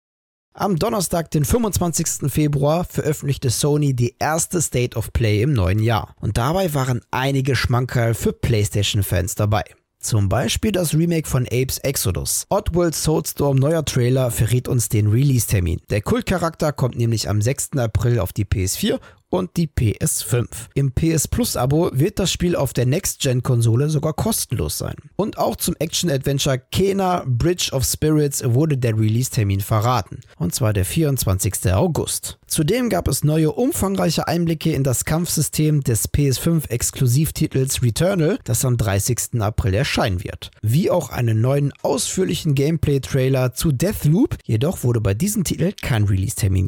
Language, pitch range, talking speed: German, 110-155 Hz, 145 wpm